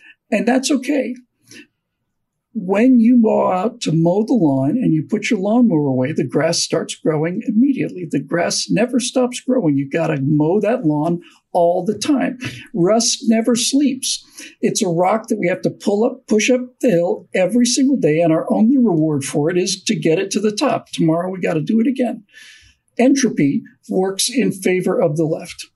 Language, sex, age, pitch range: English, male, 50-69, 160-235 Hz